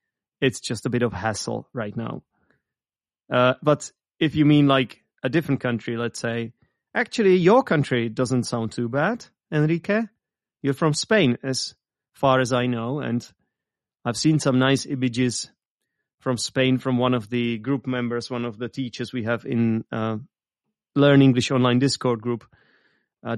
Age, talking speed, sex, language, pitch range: 30-49, 160 wpm, male, English, 115-140 Hz